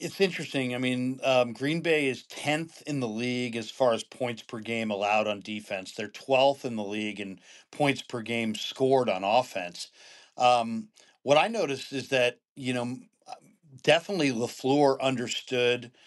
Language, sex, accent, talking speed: English, male, American, 165 wpm